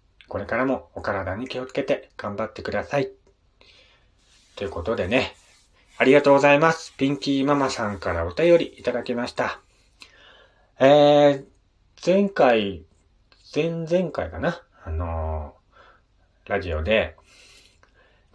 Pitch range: 90-130 Hz